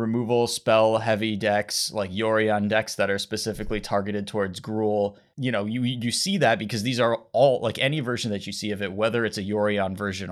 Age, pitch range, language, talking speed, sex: 20-39, 100-120 Hz, English, 210 wpm, male